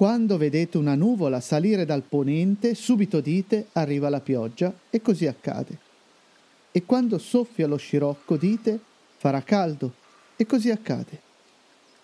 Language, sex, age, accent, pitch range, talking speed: Italian, male, 40-59, native, 155-215 Hz, 130 wpm